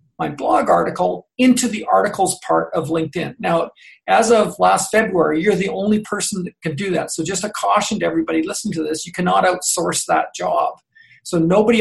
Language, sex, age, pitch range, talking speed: English, male, 40-59, 165-220 Hz, 195 wpm